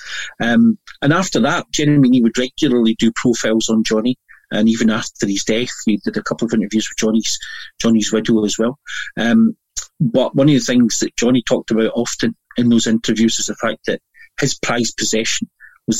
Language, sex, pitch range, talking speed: English, male, 110-125 Hz, 190 wpm